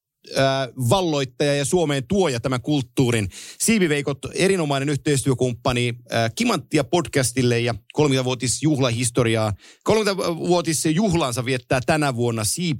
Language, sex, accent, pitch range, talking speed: Finnish, male, native, 120-150 Hz, 100 wpm